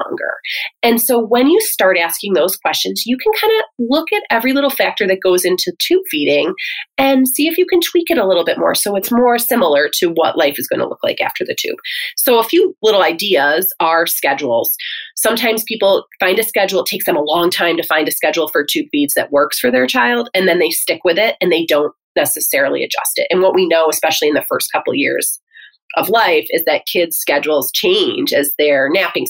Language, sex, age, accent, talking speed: English, female, 30-49, American, 225 wpm